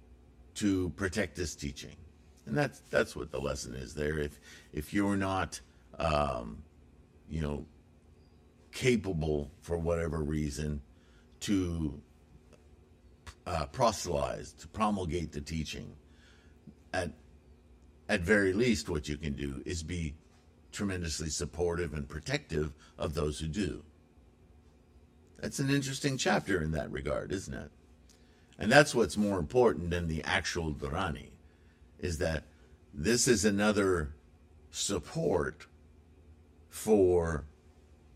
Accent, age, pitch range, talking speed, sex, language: American, 50-69, 75-85 Hz, 115 wpm, male, English